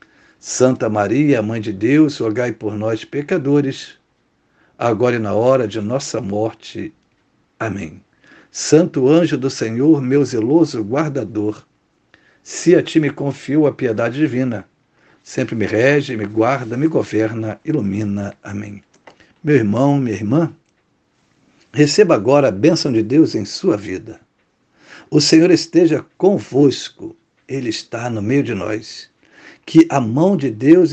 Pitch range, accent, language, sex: 110-160 Hz, Brazilian, Portuguese, male